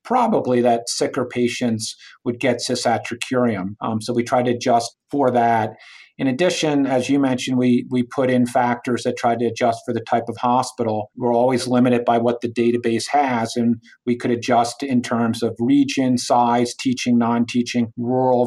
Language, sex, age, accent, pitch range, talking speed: English, male, 50-69, American, 120-130 Hz, 175 wpm